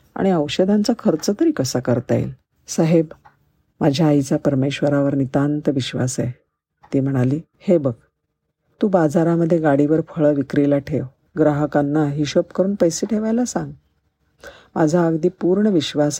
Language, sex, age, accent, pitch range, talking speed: Marathi, female, 50-69, native, 140-175 Hz, 125 wpm